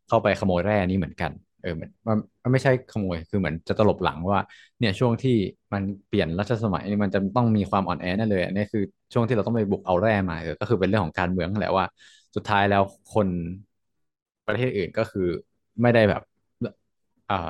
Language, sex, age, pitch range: Thai, male, 20-39, 95-110 Hz